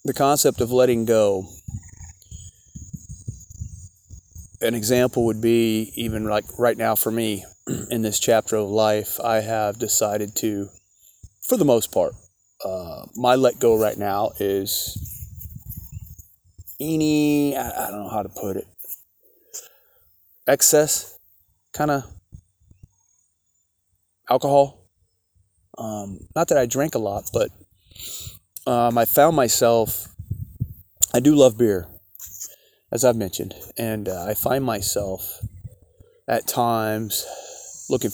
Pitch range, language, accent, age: 95-120 Hz, English, American, 30-49